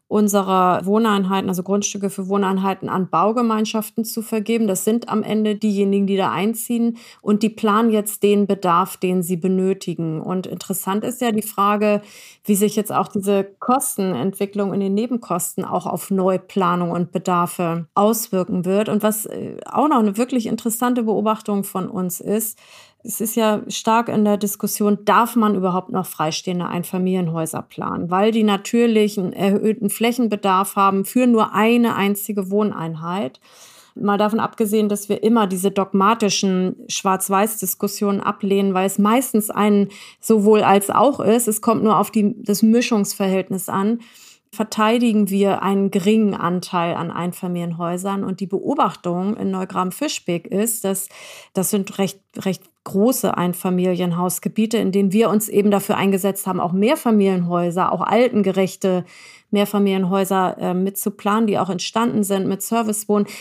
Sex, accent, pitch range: female, German, 190-220 Hz